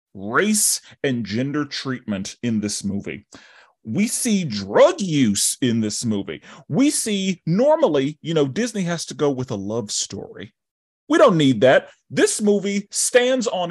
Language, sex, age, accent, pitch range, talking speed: English, male, 30-49, American, 115-180 Hz, 155 wpm